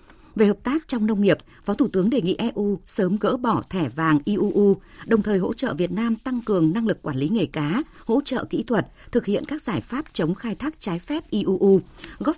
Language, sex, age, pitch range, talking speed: Vietnamese, female, 20-39, 175-240 Hz, 235 wpm